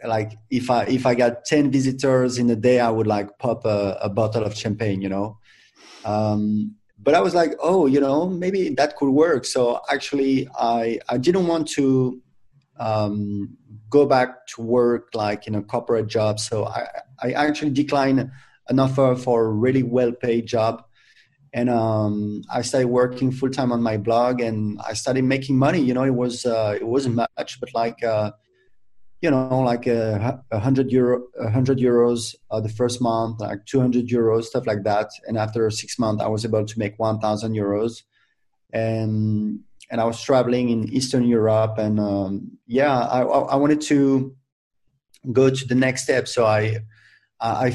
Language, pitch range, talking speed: English, 110-130 Hz, 180 wpm